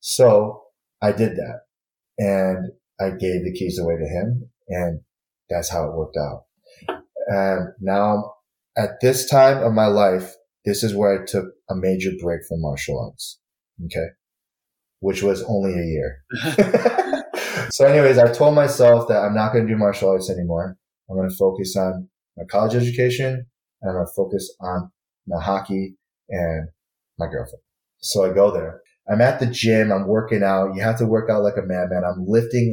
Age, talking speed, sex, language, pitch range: 30-49, 170 wpm, male, English, 95-115 Hz